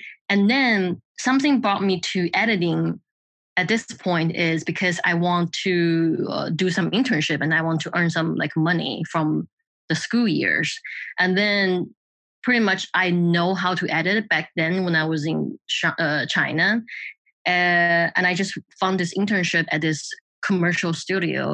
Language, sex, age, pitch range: English, female, 20-39, 160-190 Hz